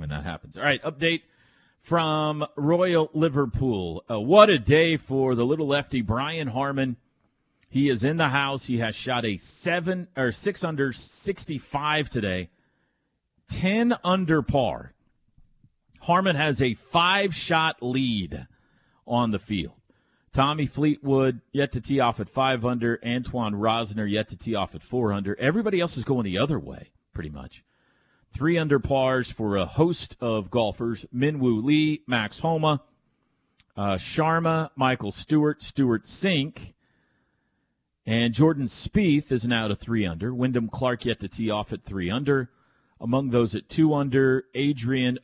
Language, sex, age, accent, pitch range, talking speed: English, male, 40-59, American, 105-145 Hz, 150 wpm